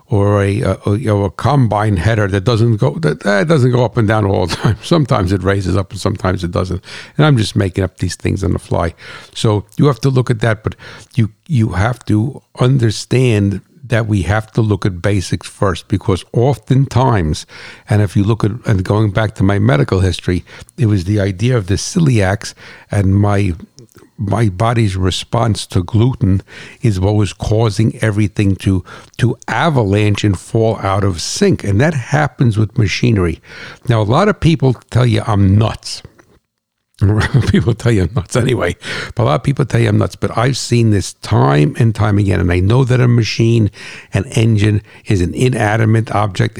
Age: 60-79